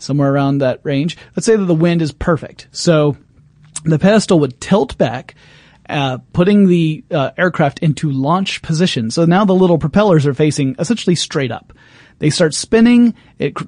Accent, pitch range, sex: American, 140-180 Hz, male